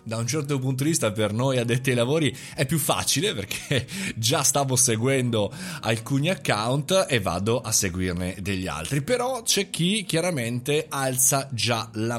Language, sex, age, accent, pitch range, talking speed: Italian, male, 30-49, native, 105-150 Hz, 160 wpm